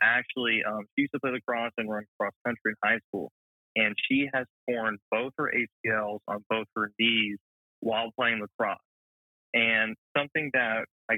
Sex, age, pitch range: male, 20-39, 110-120 Hz